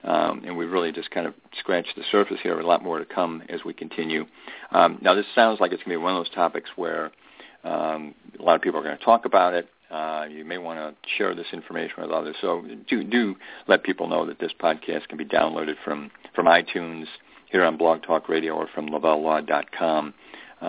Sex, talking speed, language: male, 225 wpm, English